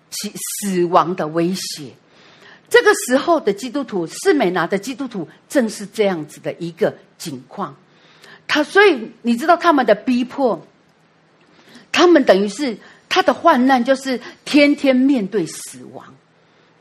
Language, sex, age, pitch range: Chinese, female, 50-69, 200-310 Hz